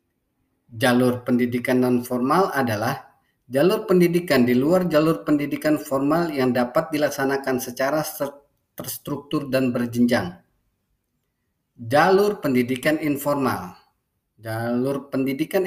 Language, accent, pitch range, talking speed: Indonesian, native, 125-155 Hz, 90 wpm